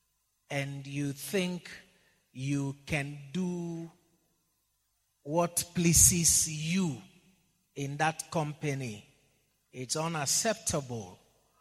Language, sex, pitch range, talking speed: English, male, 140-180 Hz, 70 wpm